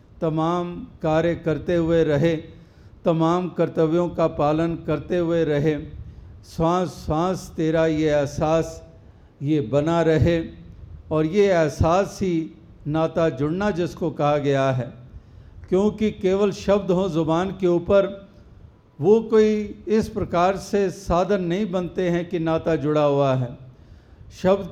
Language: Hindi